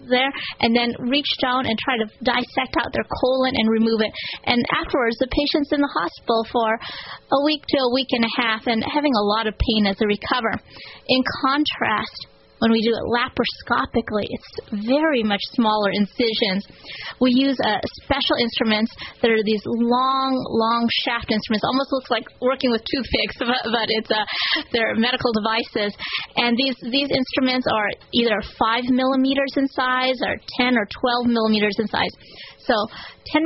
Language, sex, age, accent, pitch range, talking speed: English, female, 30-49, American, 220-265 Hz, 170 wpm